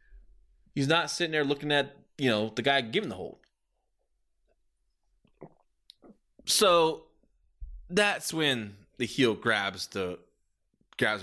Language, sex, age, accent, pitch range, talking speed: English, male, 20-39, American, 90-125 Hz, 110 wpm